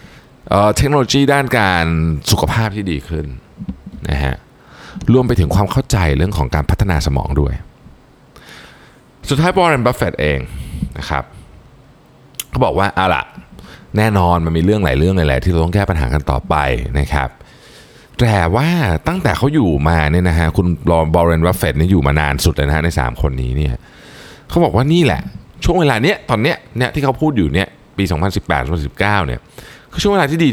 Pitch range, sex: 75-120 Hz, male